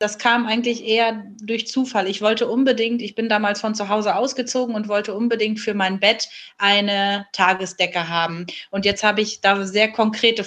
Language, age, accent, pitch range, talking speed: German, 30-49, German, 205-265 Hz, 185 wpm